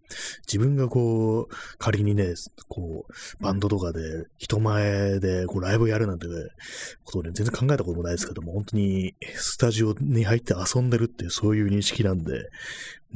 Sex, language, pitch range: male, Japanese, 90-120 Hz